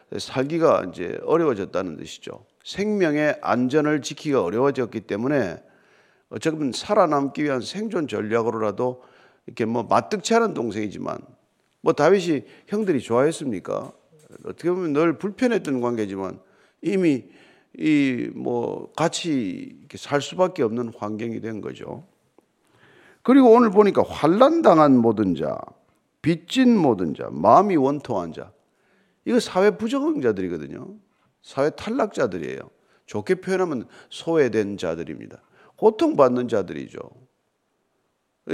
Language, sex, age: Korean, male, 50-69